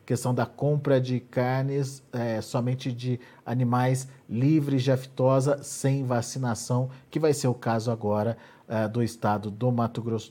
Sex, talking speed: male, 150 wpm